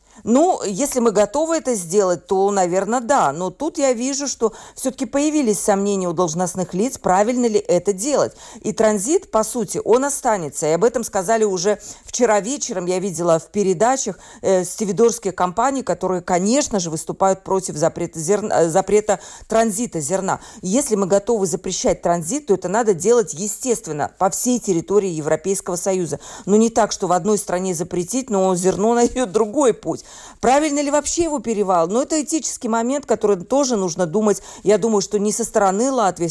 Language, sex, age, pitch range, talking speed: Russian, female, 40-59, 185-235 Hz, 165 wpm